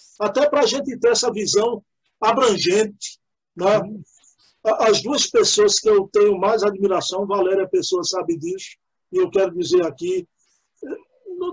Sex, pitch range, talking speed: male, 200-325 Hz, 140 wpm